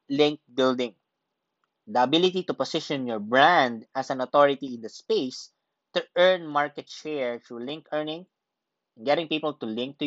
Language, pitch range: English, 130-165 Hz